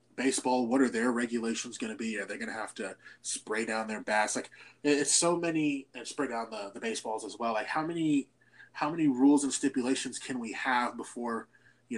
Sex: male